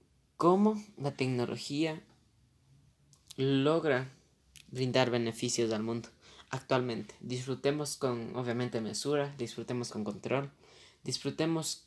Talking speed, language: 85 wpm, Spanish